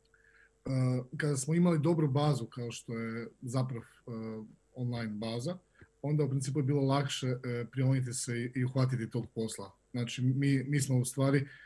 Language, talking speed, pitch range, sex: Croatian, 155 wpm, 120-140 Hz, male